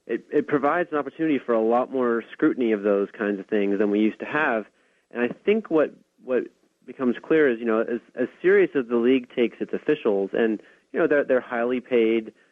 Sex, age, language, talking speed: male, 30-49, English, 220 wpm